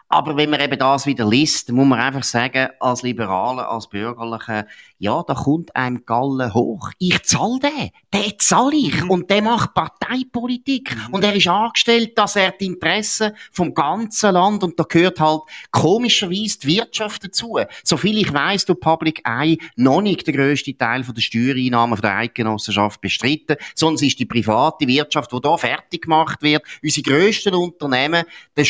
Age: 30-49